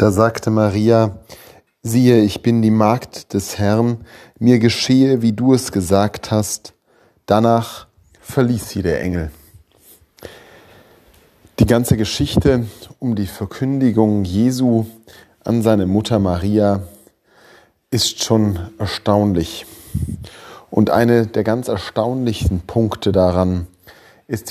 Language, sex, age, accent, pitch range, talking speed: German, male, 30-49, German, 95-115 Hz, 110 wpm